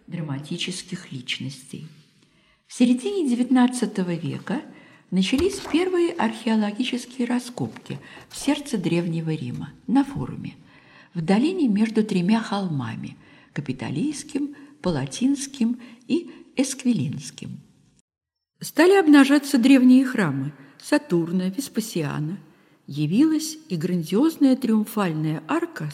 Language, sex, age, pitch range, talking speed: Russian, female, 50-69, 165-275 Hz, 85 wpm